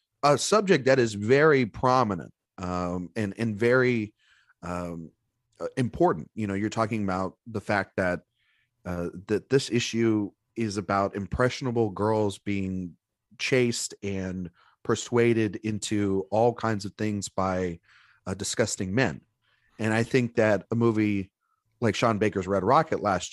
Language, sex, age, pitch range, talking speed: English, male, 30-49, 100-125 Hz, 135 wpm